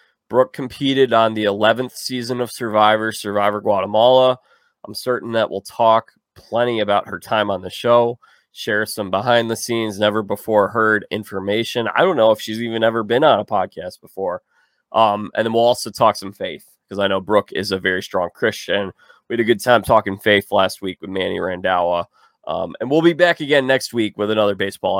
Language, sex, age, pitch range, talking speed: English, male, 20-39, 105-120 Hz, 190 wpm